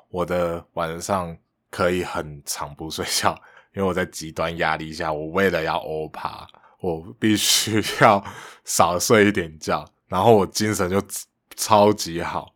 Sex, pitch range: male, 85-110 Hz